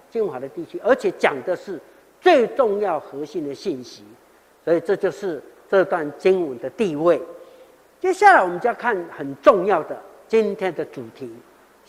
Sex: male